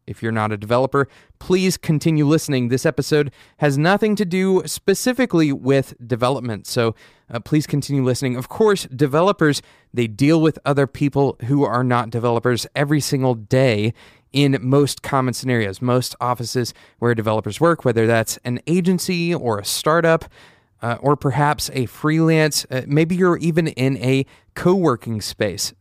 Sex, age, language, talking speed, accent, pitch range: male, 30-49, English, 155 wpm, American, 120-165 Hz